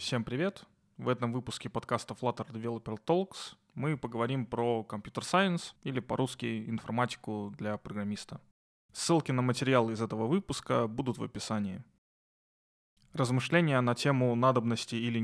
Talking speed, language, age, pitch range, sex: 130 wpm, Russian, 20-39, 115-140 Hz, male